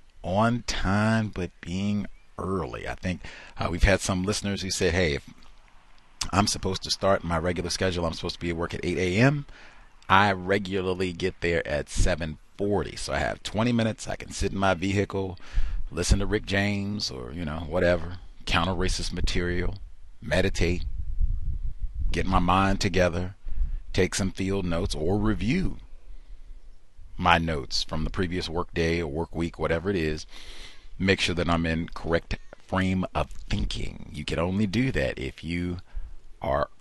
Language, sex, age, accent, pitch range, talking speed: English, male, 40-59, American, 80-100 Hz, 165 wpm